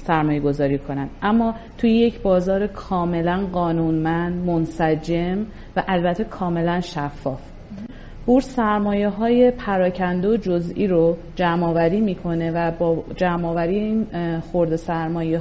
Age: 40-59